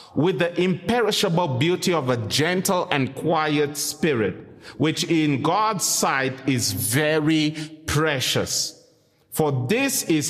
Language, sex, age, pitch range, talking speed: English, male, 30-49, 140-190 Hz, 115 wpm